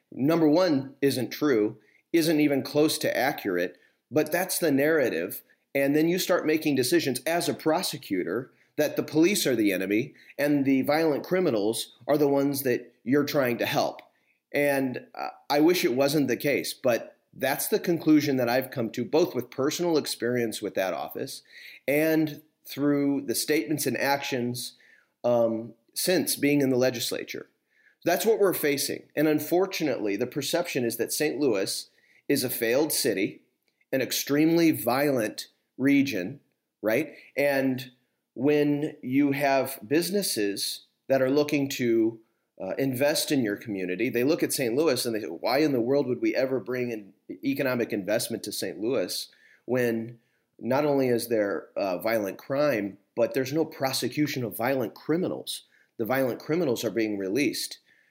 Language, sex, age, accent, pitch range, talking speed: English, male, 30-49, American, 120-155 Hz, 155 wpm